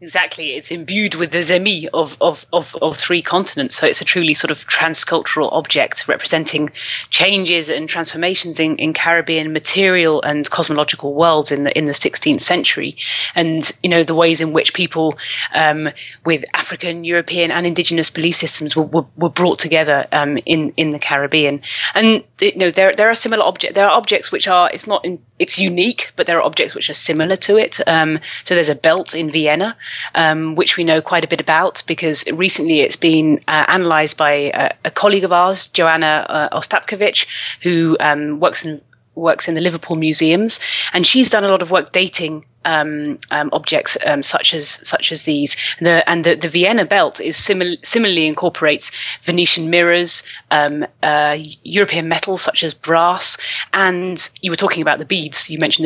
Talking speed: 185 wpm